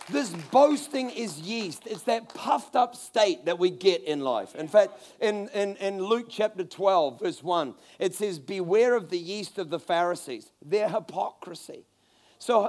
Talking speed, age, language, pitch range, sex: 165 wpm, 40-59, English, 185-240 Hz, male